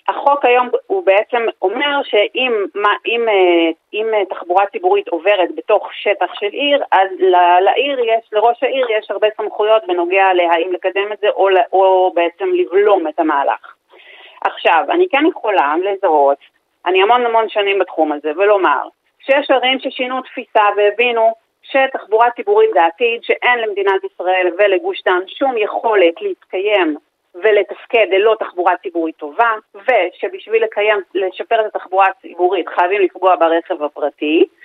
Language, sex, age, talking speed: Hebrew, female, 40-59, 135 wpm